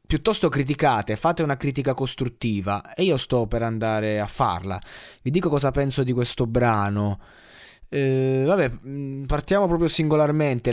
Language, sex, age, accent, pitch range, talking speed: Italian, male, 20-39, native, 105-130 Hz, 140 wpm